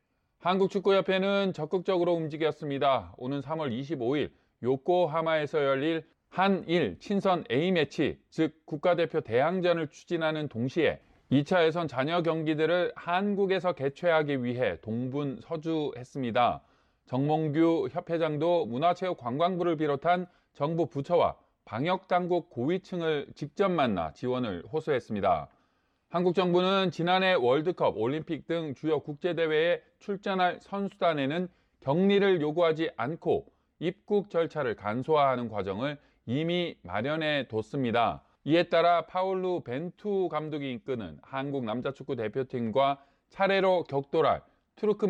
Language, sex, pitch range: Korean, male, 140-180 Hz